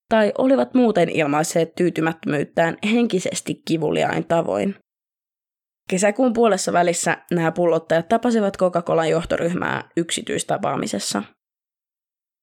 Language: Finnish